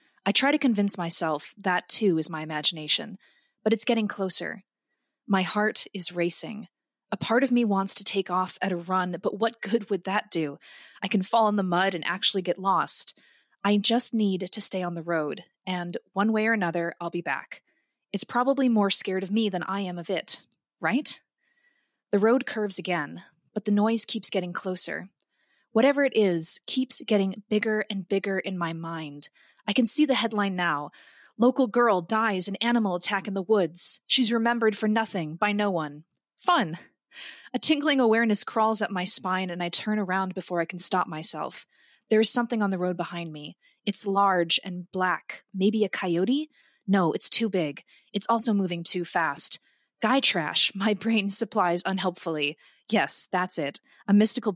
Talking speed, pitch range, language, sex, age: 185 wpm, 180-225 Hz, English, female, 20-39